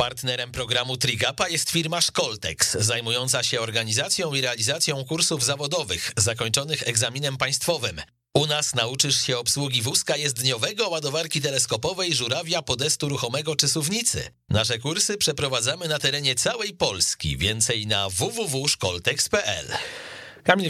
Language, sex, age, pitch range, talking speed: Polish, male, 40-59, 105-140 Hz, 115 wpm